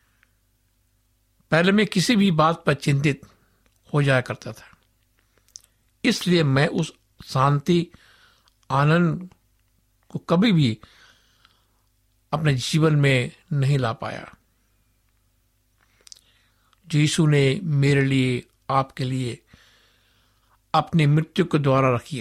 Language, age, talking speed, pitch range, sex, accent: Hindi, 60-79, 100 wpm, 110-155 Hz, male, native